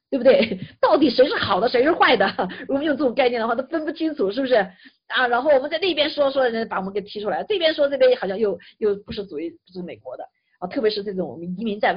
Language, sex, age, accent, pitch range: Chinese, female, 50-69, native, 205-320 Hz